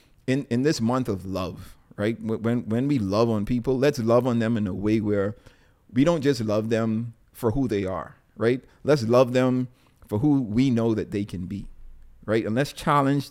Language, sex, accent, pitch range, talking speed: English, male, American, 105-125 Hz, 205 wpm